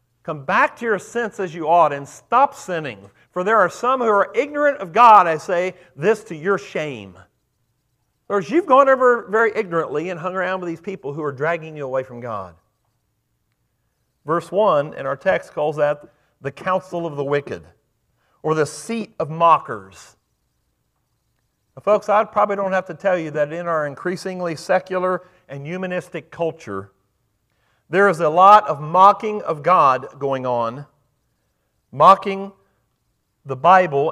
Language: English